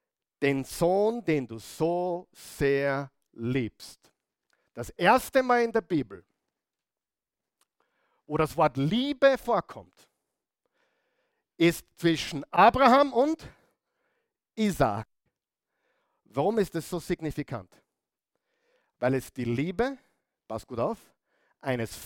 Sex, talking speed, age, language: male, 100 wpm, 50-69, German